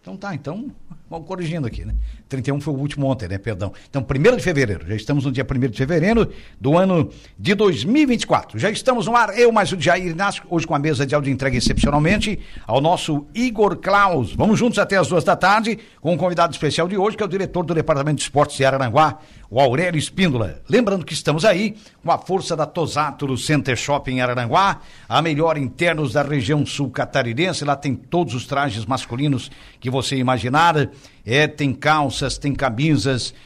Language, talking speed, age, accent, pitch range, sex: Portuguese, 200 wpm, 60-79, Brazilian, 135-180 Hz, male